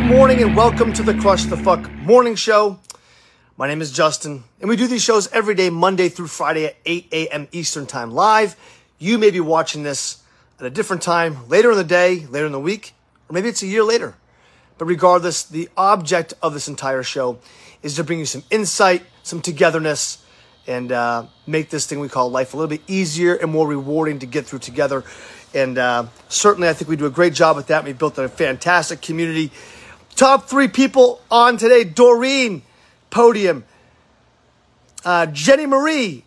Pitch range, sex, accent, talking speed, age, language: 150-215 Hz, male, American, 190 wpm, 30-49, English